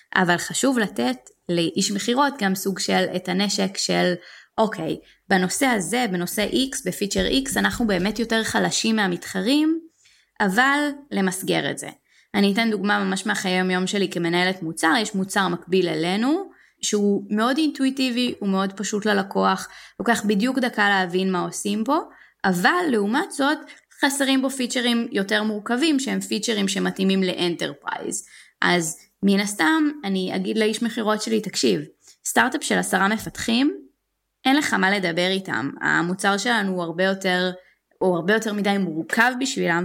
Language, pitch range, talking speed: English, 185-235 Hz, 135 wpm